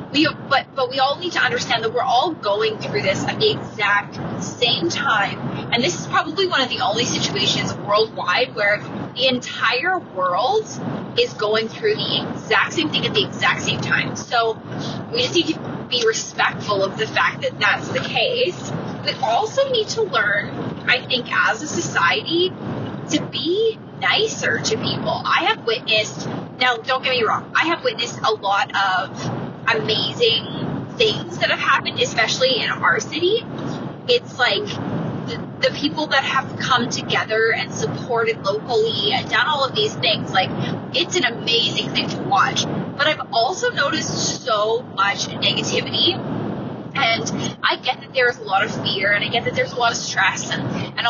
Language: English